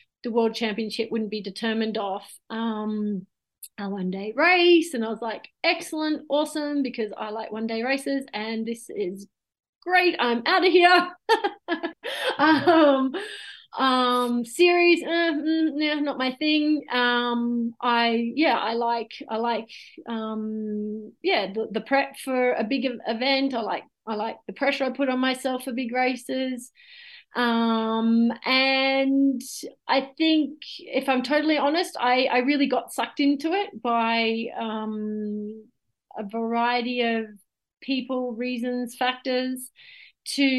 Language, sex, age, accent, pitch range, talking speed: English, female, 30-49, Australian, 225-280 Hz, 140 wpm